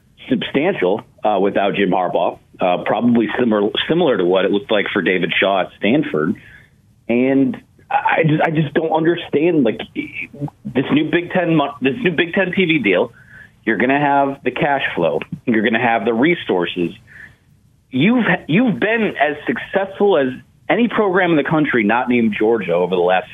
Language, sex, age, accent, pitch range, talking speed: English, male, 30-49, American, 115-160 Hz, 170 wpm